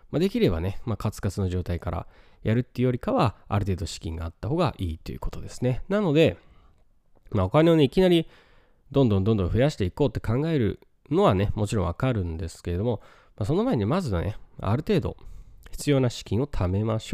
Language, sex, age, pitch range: Japanese, male, 20-39, 95-135 Hz